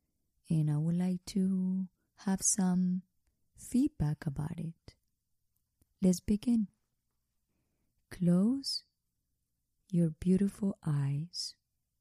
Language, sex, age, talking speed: Spanish, female, 20-39, 80 wpm